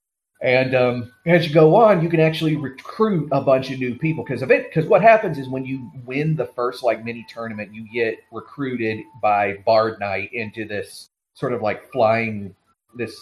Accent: American